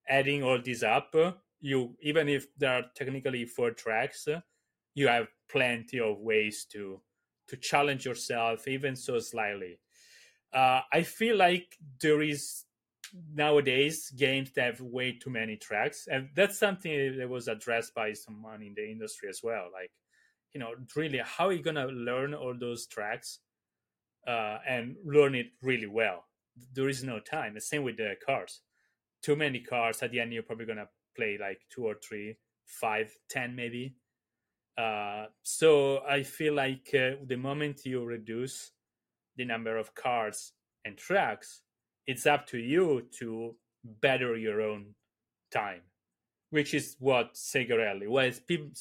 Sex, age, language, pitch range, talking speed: male, 30-49, English, 120-145 Hz, 155 wpm